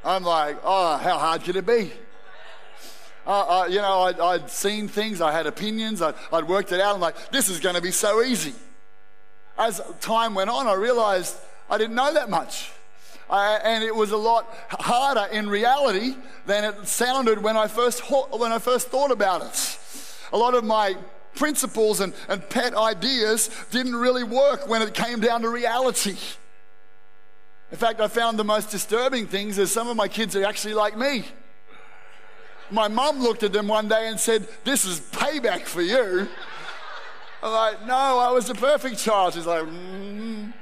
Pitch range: 185-240 Hz